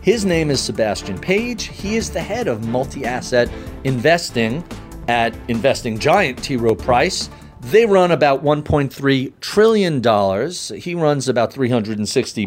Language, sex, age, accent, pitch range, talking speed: English, male, 40-59, American, 120-170 Hz, 130 wpm